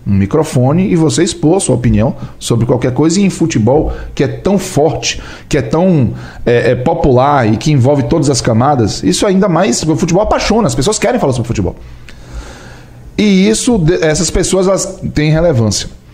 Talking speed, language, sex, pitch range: 180 wpm, Portuguese, male, 120-175 Hz